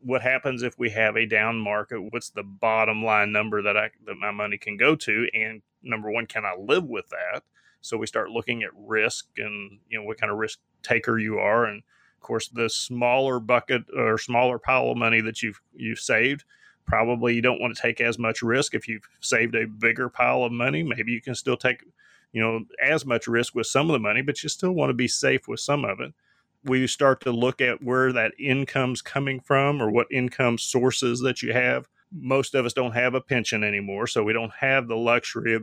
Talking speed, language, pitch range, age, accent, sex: 225 wpm, English, 110-125 Hz, 30-49, American, male